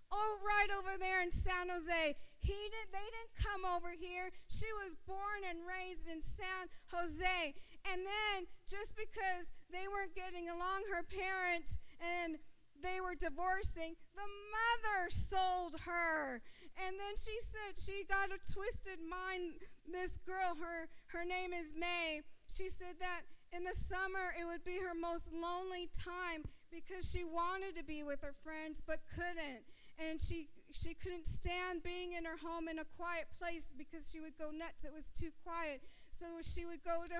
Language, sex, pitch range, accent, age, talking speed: English, female, 330-370 Hz, American, 40-59, 170 wpm